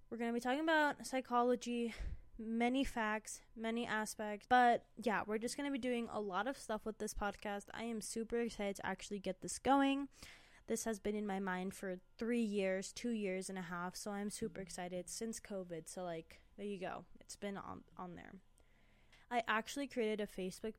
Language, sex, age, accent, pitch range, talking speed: English, female, 10-29, American, 195-235 Hz, 200 wpm